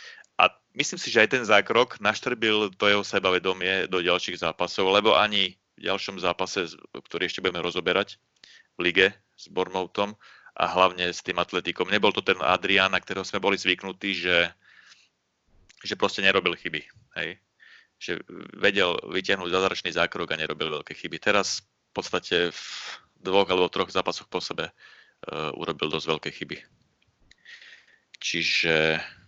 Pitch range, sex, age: 90-100 Hz, male, 30-49